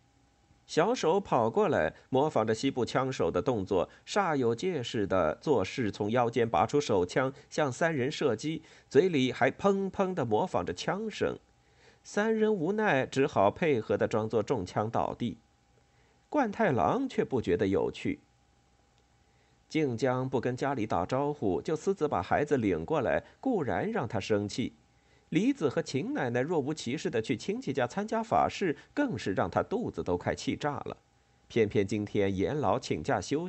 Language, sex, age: Chinese, male, 50-69